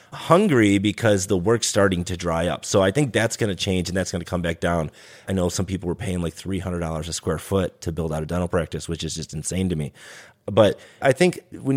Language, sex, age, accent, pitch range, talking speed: English, male, 30-49, American, 85-110 Hz, 250 wpm